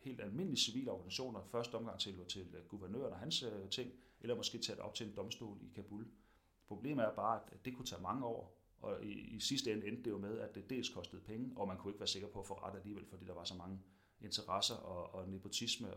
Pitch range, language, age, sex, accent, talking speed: 95-120 Hz, Danish, 30-49, male, native, 255 wpm